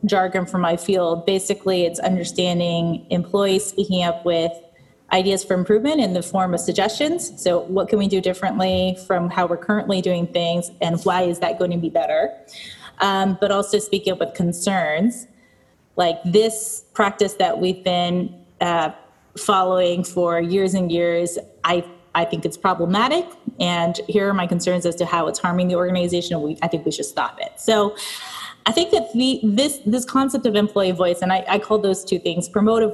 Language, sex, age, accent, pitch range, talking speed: English, female, 20-39, American, 175-205 Hz, 185 wpm